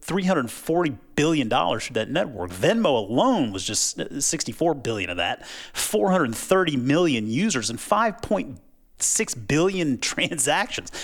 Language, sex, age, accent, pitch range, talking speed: English, male, 30-49, American, 125-175 Hz, 145 wpm